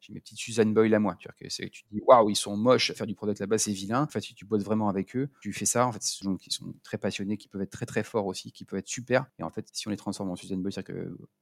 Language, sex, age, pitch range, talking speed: French, male, 40-59, 100-135 Hz, 345 wpm